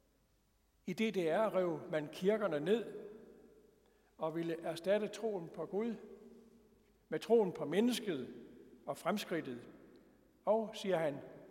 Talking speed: 110 wpm